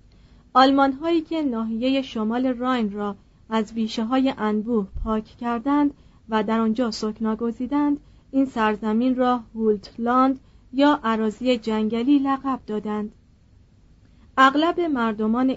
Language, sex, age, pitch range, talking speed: Persian, female, 40-59, 220-270 Hz, 100 wpm